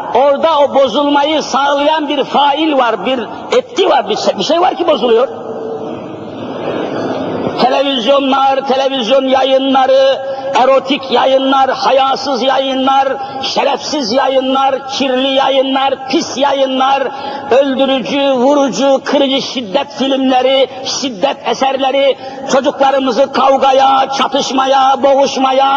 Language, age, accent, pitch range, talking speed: Turkish, 50-69, native, 265-300 Hz, 90 wpm